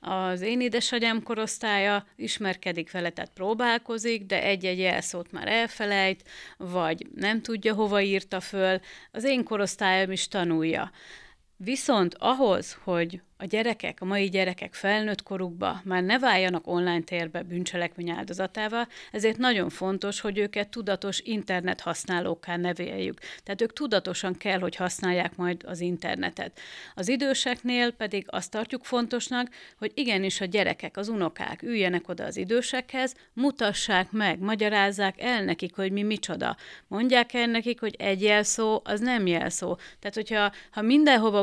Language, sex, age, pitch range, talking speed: Hungarian, female, 30-49, 180-225 Hz, 140 wpm